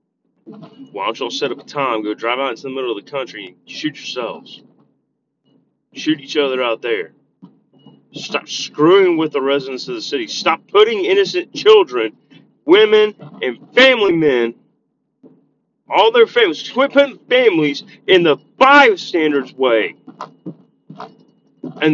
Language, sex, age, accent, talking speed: English, male, 40-59, American, 135 wpm